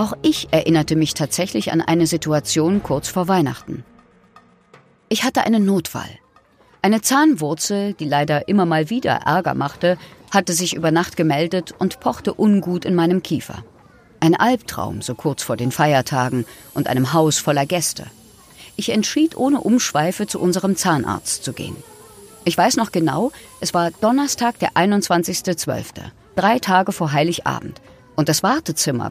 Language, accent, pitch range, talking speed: German, German, 150-200 Hz, 150 wpm